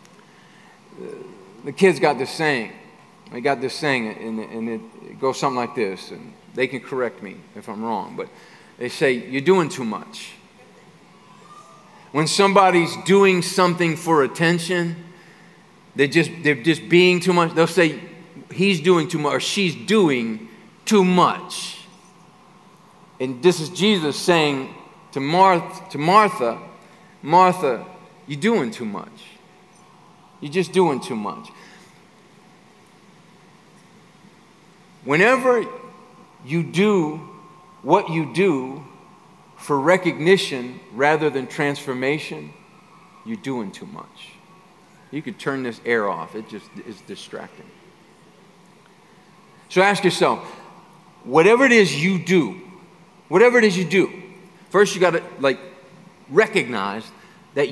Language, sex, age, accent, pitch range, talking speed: English, male, 40-59, American, 155-190 Hz, 125 wpm